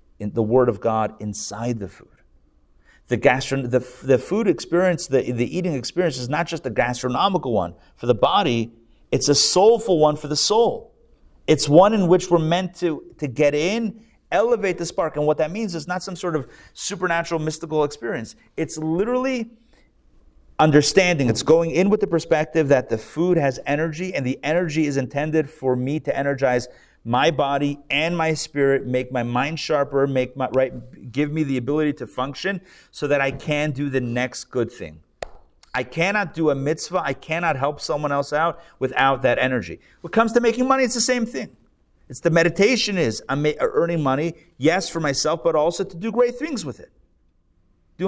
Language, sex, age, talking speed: English, male, 40-59, 185 wpm